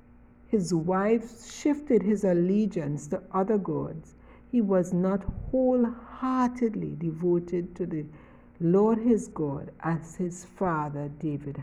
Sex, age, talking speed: female, 60-79, 115 wpm